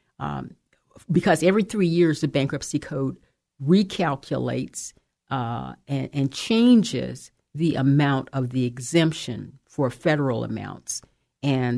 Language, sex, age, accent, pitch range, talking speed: English, female, 50-69, American, 130-160 Hz, 110 wpm